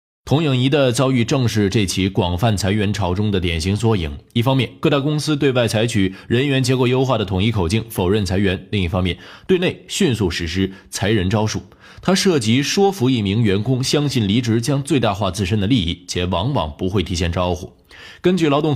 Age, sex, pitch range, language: 20-39, male, 95-130 Hz, Chinese